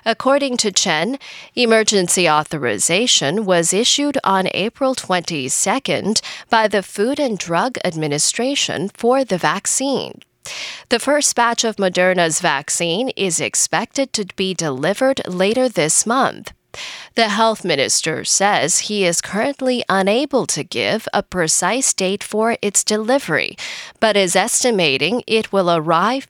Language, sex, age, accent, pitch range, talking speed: English, female, 10-29, American, 180-245 Hz, 125 wpm